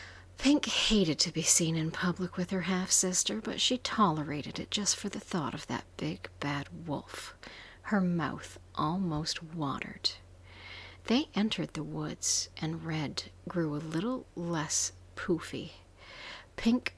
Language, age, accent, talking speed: English, 50-69, American, 140 wpm